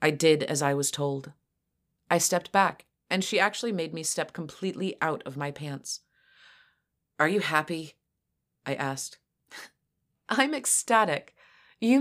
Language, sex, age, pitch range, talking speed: English, female, 30-49, 145-195 Hz, 140 wpm